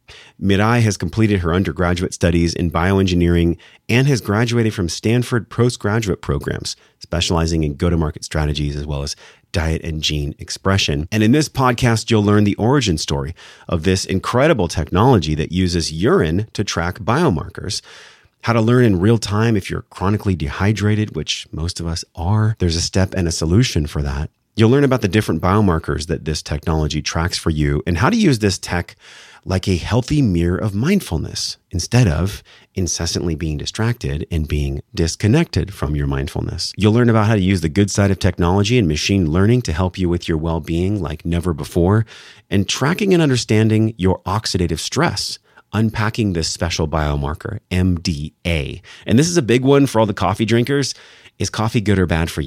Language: English